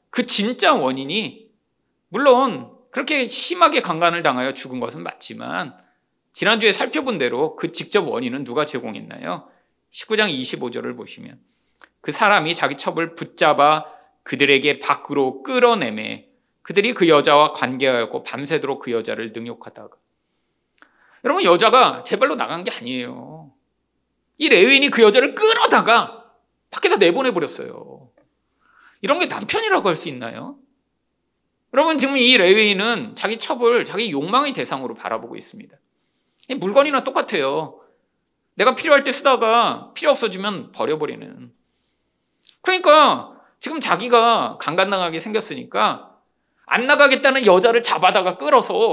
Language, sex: Korean, male